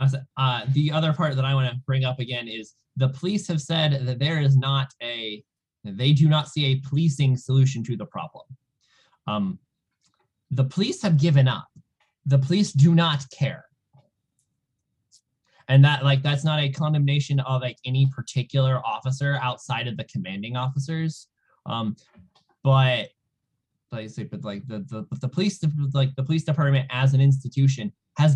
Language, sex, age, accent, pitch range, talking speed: English, male, 20-39, American, 125-145 Hz, 165 wpm